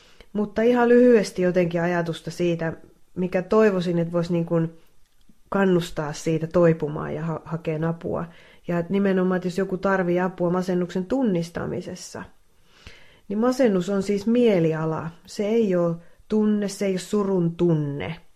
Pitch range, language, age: 165-190 Hz, English, 30-49